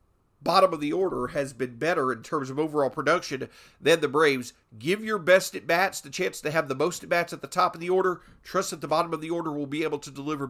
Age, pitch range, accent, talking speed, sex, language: 50-69, 165-245 Hz, American, 250 wpm, male, English